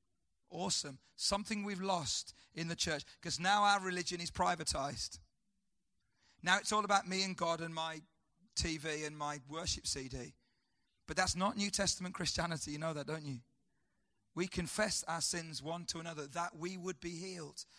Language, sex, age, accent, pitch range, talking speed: English, male, 30-49, British, 160-200 Hz, 170 wpm